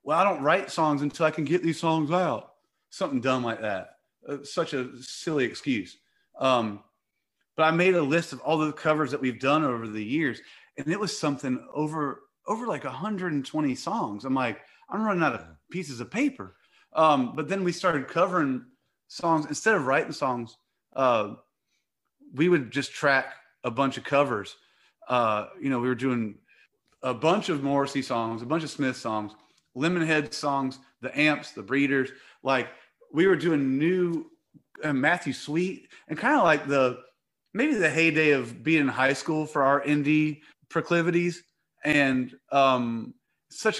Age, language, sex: 30-49, English, male